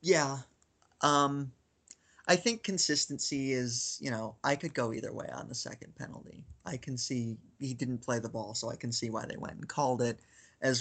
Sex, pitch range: male, 120-145 Hz